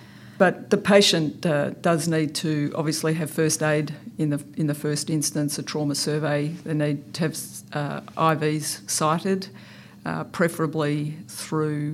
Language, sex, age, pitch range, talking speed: English, female, 50-69, 145-160 Hz, 155 wpm